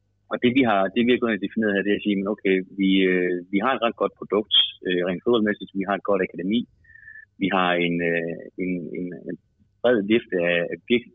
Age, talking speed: 30-49, 205 wpm